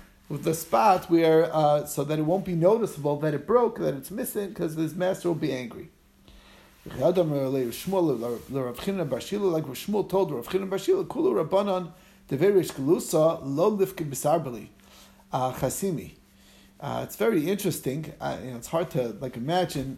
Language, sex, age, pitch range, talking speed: English, male, 30-49, 135-175 Hz, 110 wpm